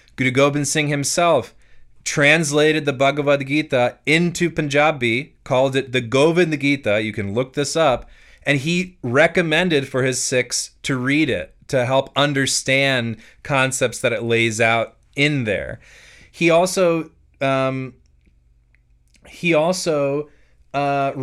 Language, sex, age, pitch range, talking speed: English, male, 30-49, 125-155 Hz, 125 wpm